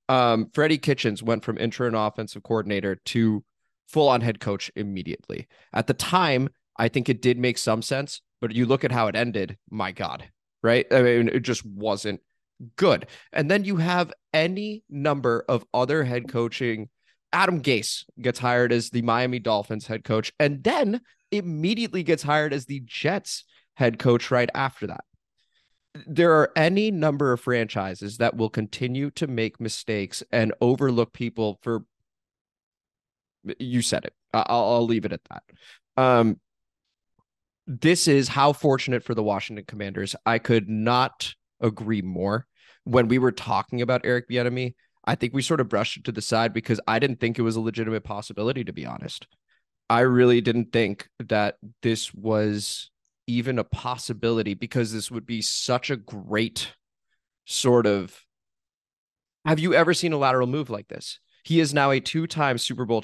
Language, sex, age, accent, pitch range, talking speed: English, male, 20-39, American, 110-140 Hz, 170 wpm